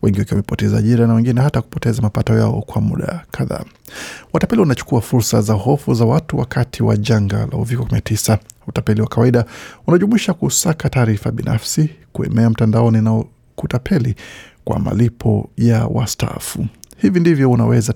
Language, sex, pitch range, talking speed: Swahili, male, 110-130 Hz, 145 wpm